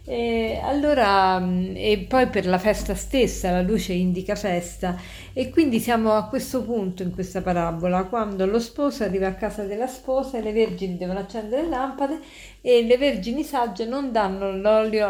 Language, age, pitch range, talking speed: Italian, 50-69, 185-240 Hz, 170 wpm